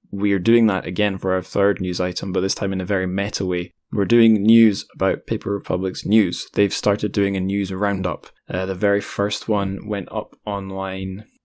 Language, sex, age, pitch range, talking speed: English, male, 10-29, 95-110 Hz, 205 wpm